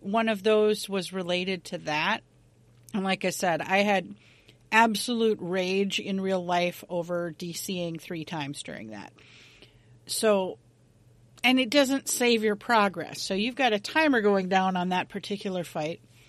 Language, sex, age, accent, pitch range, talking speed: English, female, 40-59, American, 155-225 Hz, 155 wpm